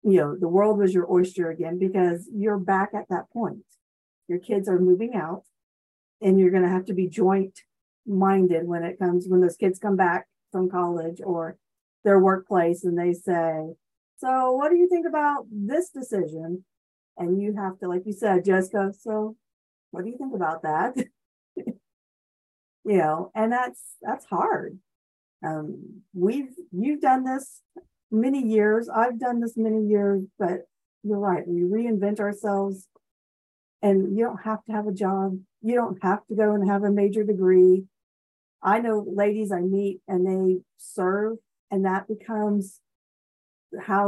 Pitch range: 175-210 Hz